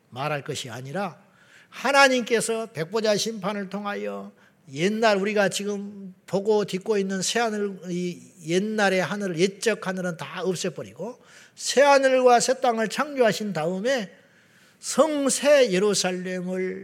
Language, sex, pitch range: Korean, male, 170-230 Hz